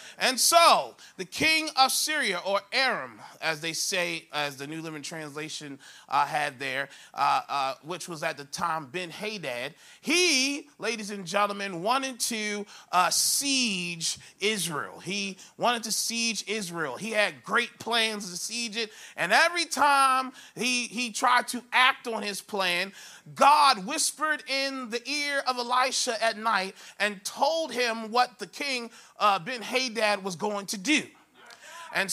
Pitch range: 195-285 Hz